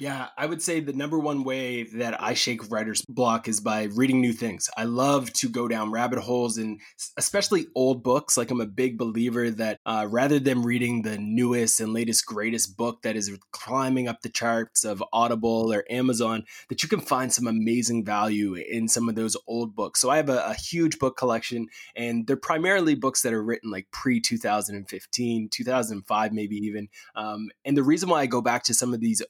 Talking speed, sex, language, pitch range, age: 205 wpm, male, English, 110-130 Hz, 20-39